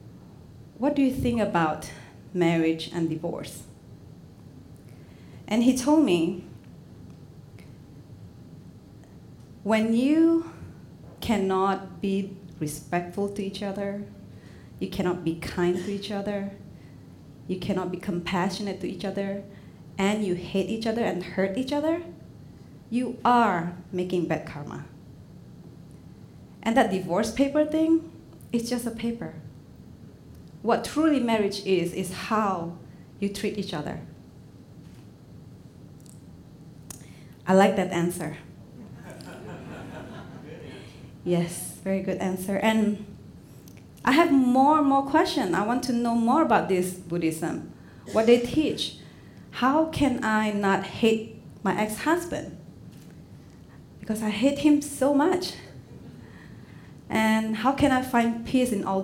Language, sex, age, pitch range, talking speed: English, female, 30-49, 180-240 Hz, 115 wpm